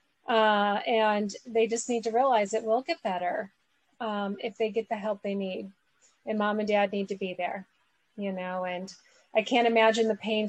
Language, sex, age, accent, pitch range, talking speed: English, female, 30-49, American, 210-245 Hz, 200 wpm